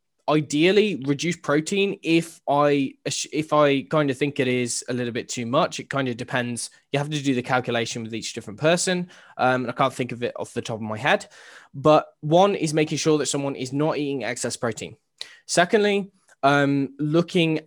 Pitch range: 130-160 Hz